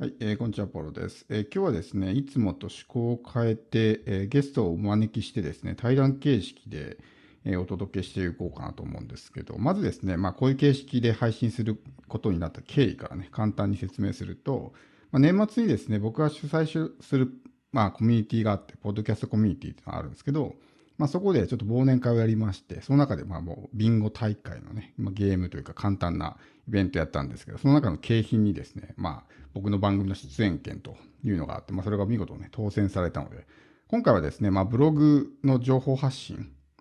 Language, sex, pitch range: Japanese, male, 100-130 Hz